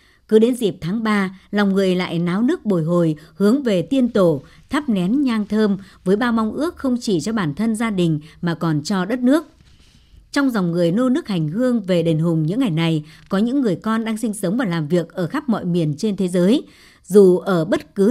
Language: Vietnamese